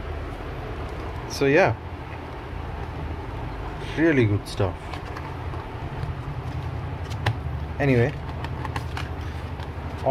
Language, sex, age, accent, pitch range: English, male, 20-39, Indian, 105-135 Hz